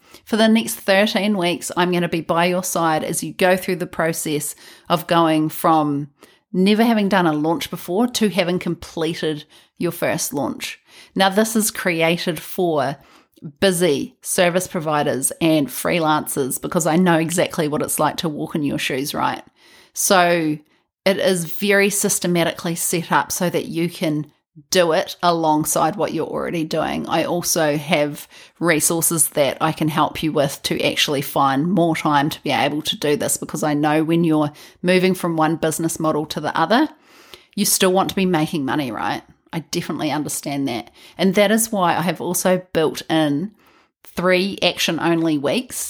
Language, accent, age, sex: English, Australian, 30-49, female